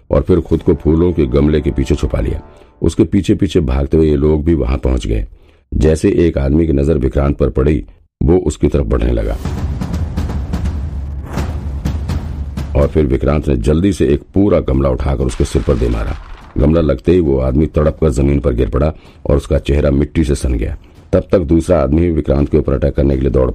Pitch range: 70-80 Hz